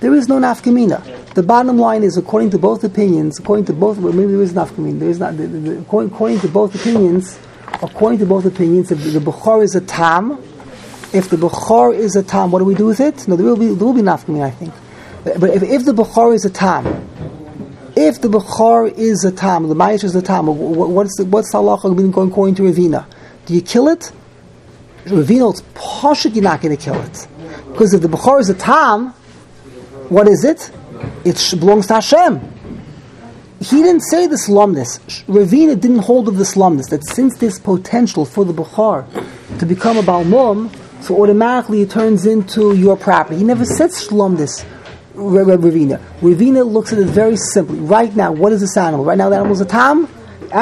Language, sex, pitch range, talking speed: English, male, 175-225 Hz, 205 wpm